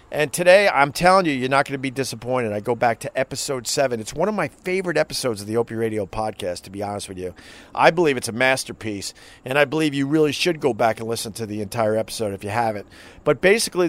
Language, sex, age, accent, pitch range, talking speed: English, male, 40-59, American, 120-155 Hz, 245 wpm